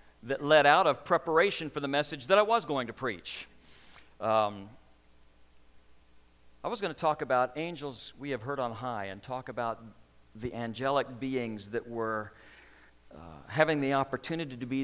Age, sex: 50-69, male